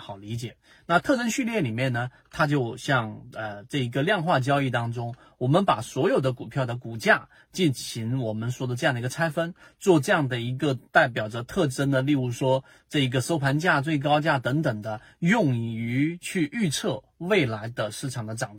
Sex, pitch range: male, 125-155 Hz